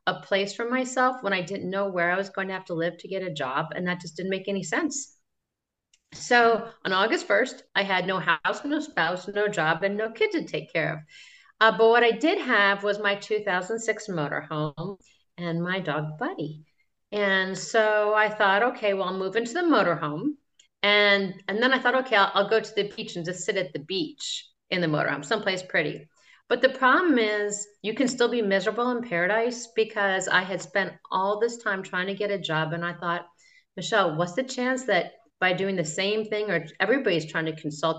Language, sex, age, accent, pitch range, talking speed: English, female, 40-59, American, 170-225 Hz, 215 wpm